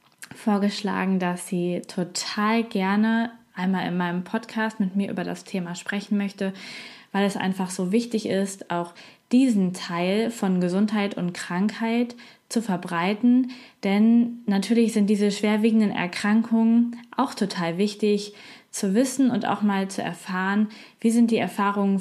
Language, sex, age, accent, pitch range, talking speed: German, female, 20-39, German, 190-230 Hz, 140 wpm